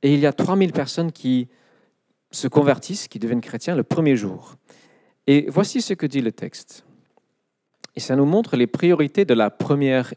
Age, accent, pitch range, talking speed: 40-59, French, 130-180 Hz, 185 wpm